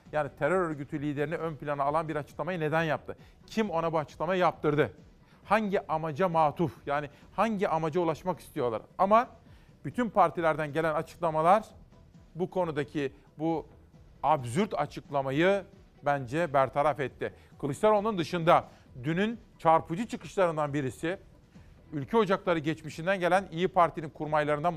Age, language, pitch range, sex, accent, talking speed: 40-59, Turkish, 150-185 Hz, male, native, 120 wpm